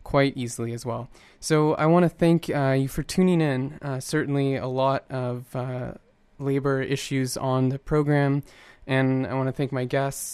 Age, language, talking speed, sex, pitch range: 20-39, English, 185 wpm, male, 125-140 Hz